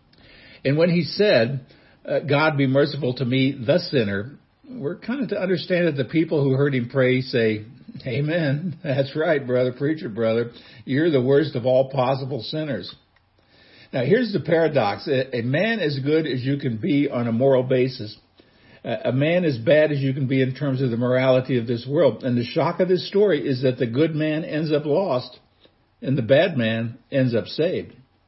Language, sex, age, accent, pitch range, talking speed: English, male, 60-79, American, 120-155 Hz, 190 wpm